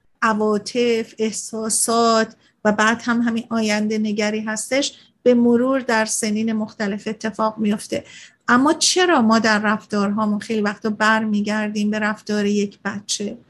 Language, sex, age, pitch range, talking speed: Persian, female, 50-69, 215-240 Hz, 130 wpm